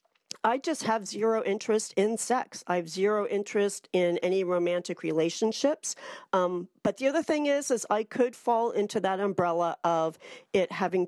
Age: 40-59